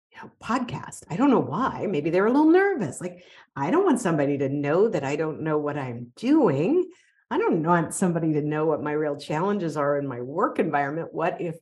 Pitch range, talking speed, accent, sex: 140-185 Hz, 210 wpm, American, female